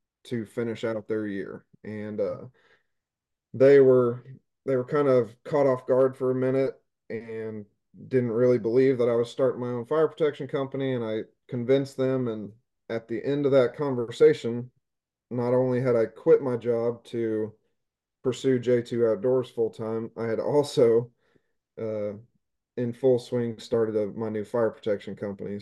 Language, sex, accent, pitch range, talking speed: English, male, American, 110-130 Hz, 165 wpm